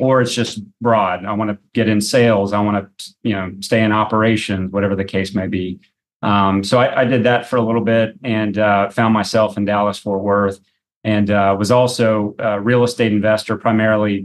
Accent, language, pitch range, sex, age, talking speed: American, English, 100-115 Hz, male, 30-49, 205 wpm